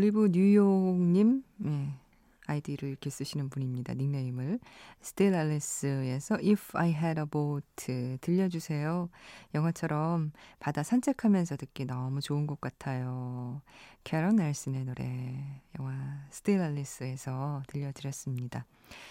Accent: native